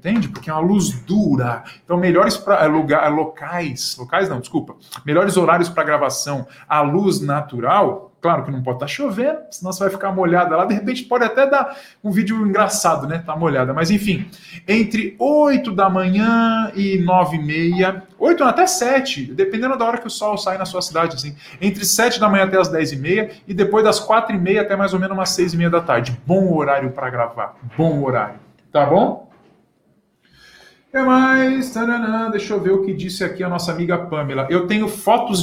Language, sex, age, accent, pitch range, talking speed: Portuguese, male, 20-39, Brazilian, 155-205 Hz, 200 wpm